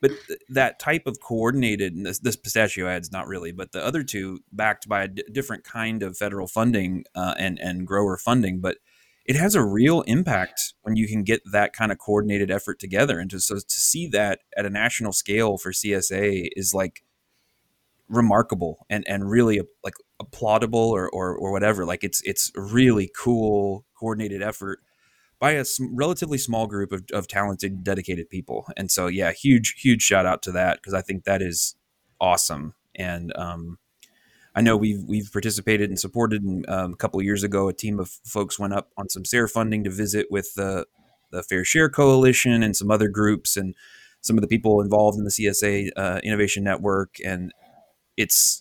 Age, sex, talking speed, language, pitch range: 30-49, male, 185 wpm, English, 95-110 Hz